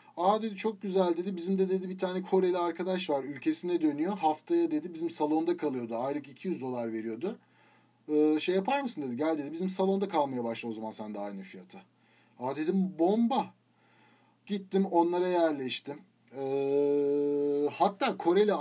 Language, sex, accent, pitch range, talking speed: Turkish, male, native, 145-195 Hz, 160 wpm